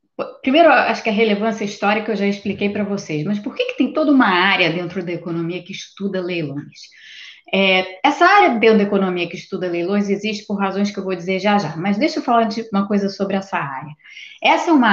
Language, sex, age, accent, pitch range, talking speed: Portuguese, female, 20-39, Brazilian, 175-230 Hz, 215 wpm